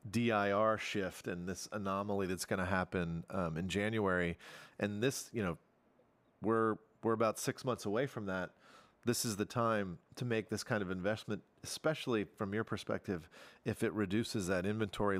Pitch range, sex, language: 95-115 Hz, male, English